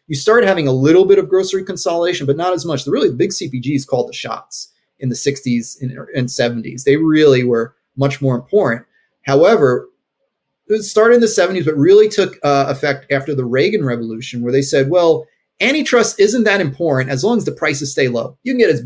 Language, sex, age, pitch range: English, male, 30-49, 130-170 Hz